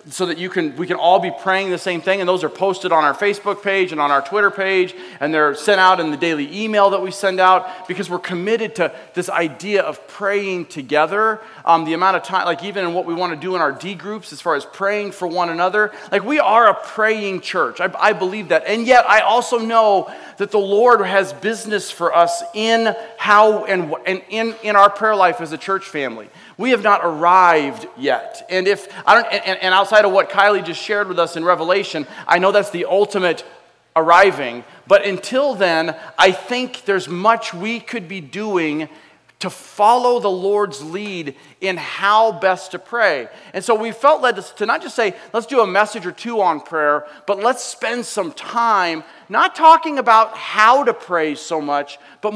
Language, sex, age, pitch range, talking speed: English, male, 30-49, 175-215 Hz, 210 wpm